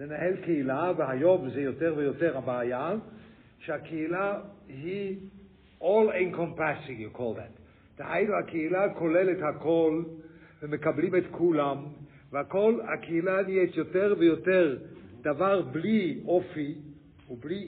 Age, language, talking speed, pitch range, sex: 60-79, English, 50 wpm, 140-185 Hz, male